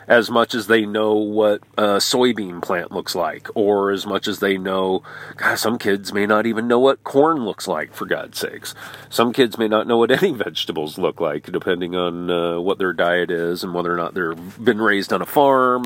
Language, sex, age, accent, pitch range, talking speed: English, male, 40-59, American, 95-125 Hz, 220 wpm